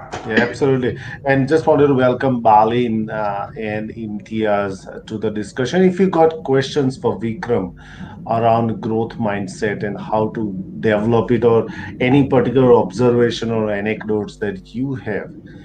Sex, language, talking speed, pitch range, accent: male, English, 140 wpm, 110-135 Hz, Indian